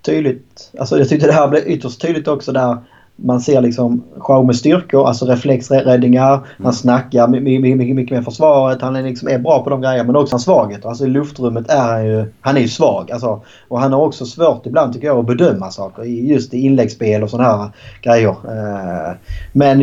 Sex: male